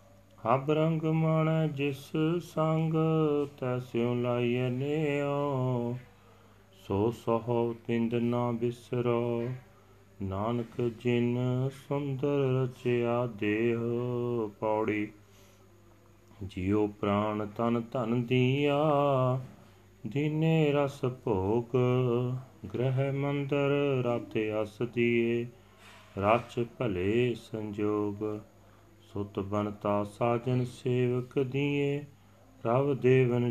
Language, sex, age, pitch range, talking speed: Punjabi, male, 40-59, 105-130 Hz, 70 wpm